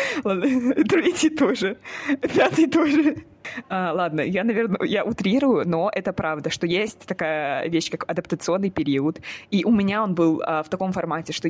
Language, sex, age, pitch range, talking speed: Russian, female, 20-39, 155-180 Hz, 150 wpm